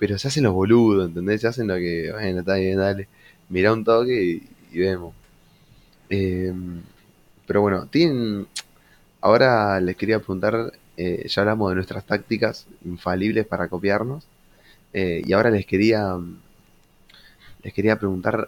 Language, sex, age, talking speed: Spanish, male, 20-39, 145 wpm